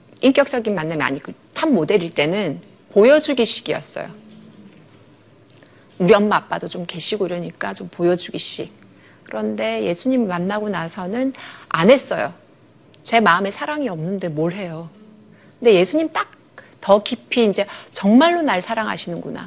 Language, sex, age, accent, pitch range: Korean, female, 40-59, native, 175-245 Hz